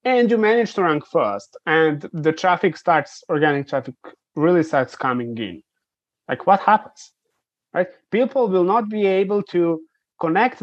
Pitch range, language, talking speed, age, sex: 150-195 Hz, English, 150 wpm, 30-49, male